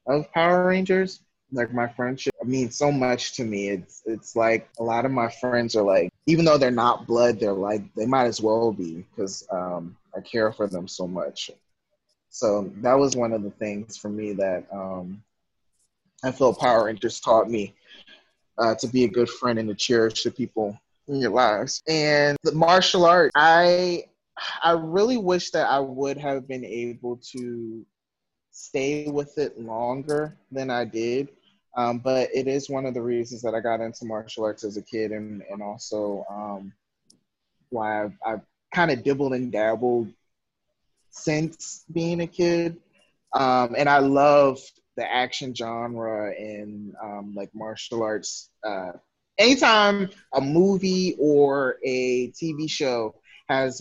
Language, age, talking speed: English, 20-39, 165 wpm